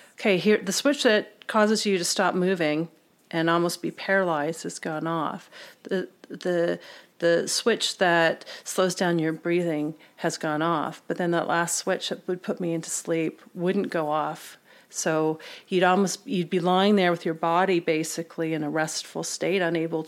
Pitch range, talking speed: 165-205 Hz, 175 wpm